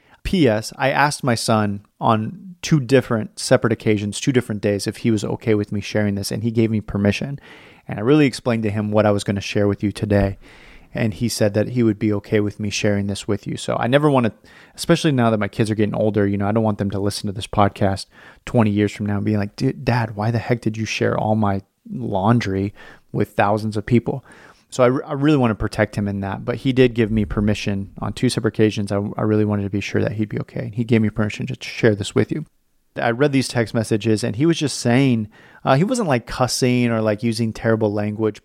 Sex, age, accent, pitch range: male, 30-49, American, 105-130 Hz